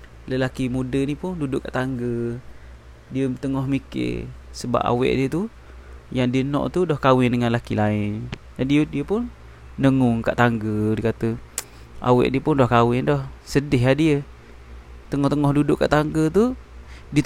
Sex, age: male, 20-39